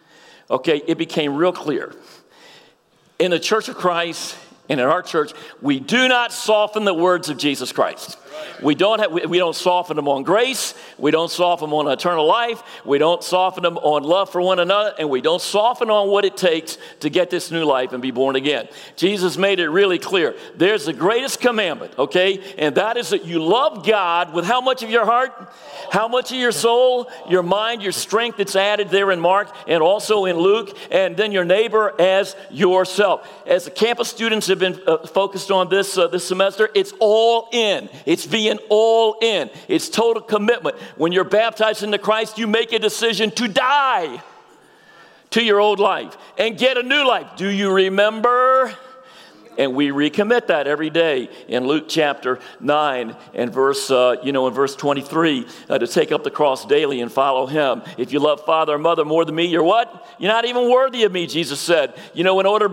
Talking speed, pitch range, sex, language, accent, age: 200 wpm, 170-235 Hz, male, English, American, 50-69